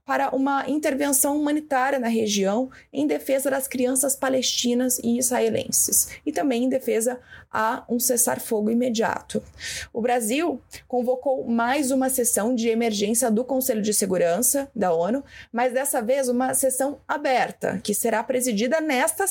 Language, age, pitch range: Portuguese, 20-39, 215-270 Hz